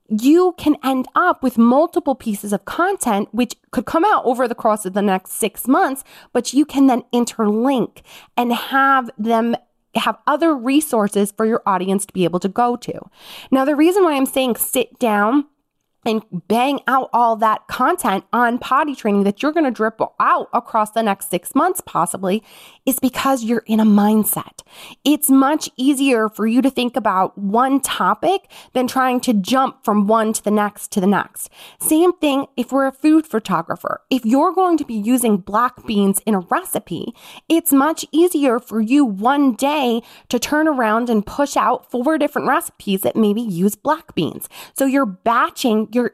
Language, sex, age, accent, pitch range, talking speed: English, female, 20-39, American, 215-275 Hz, 185 wpm